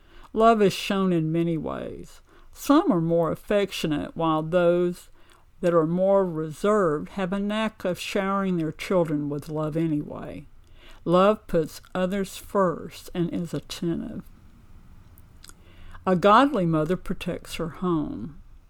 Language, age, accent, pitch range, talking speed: English, 60-79, American, 150-195 Hz, 125 wpm